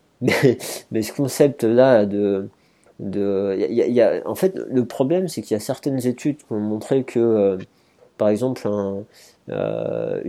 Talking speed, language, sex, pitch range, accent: 170 wpm, French, male, 100-125 Hz, French